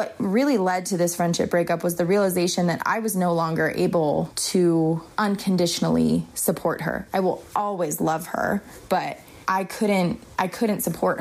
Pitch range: 170-200 Hz